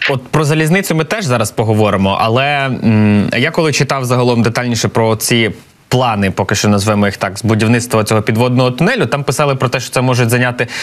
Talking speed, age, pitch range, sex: 195 wpm, 20-39, 110-145 Hz, male